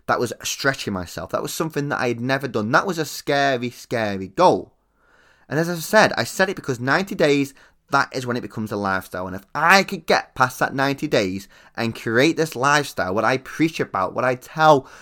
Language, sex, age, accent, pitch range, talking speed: English, male, 20-39, British, 115-165 Hz, 220 wpm